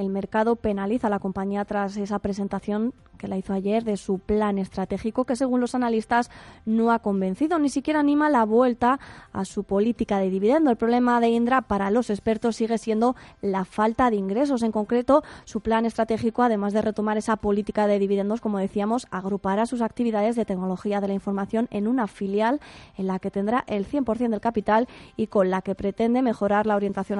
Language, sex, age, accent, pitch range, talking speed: Spanish, female, 20-39, Spanish, 200-230 Hz, 195 wpm